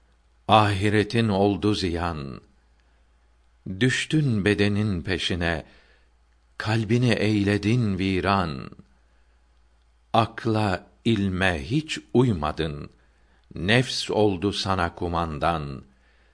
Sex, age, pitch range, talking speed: male, 60-79, 65-105 Hz, 60 wpm